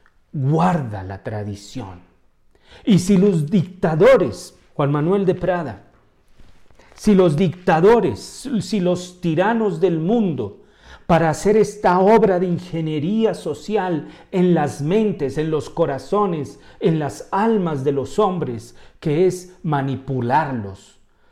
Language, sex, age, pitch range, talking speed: Spanish, male, 40-59, 110-180 Hz, 115 wpm